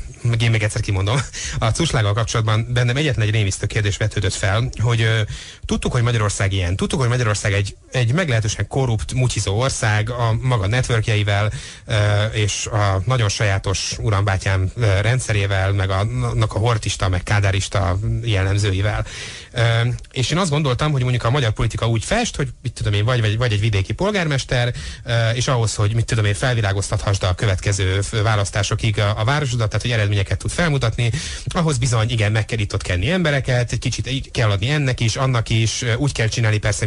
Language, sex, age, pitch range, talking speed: Hungarian, male, 30-49, 100-120 Hz, 165 wpm